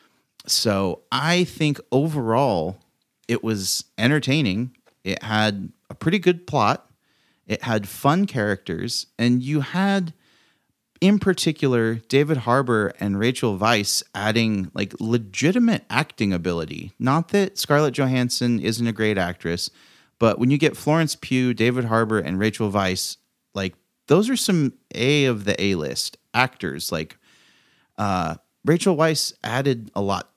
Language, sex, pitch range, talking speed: English, male, 95-130 Hz, 135 wpm